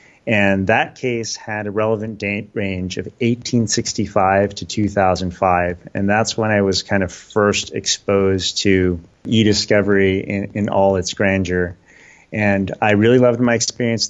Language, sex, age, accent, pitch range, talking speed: English, male, 30-49, American, 95-110 Hz, 145 wpm